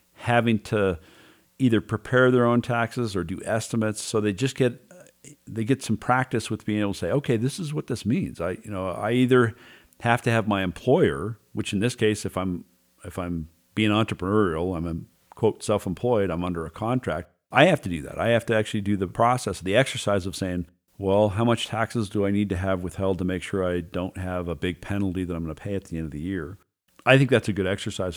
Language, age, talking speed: English, 50-69, 230 wpm